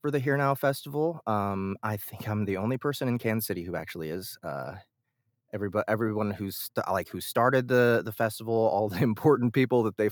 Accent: American